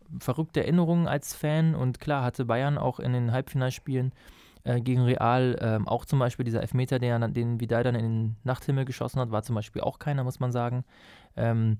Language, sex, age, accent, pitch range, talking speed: German, male, 20-39, German, 120-145 Hz, 200 wpm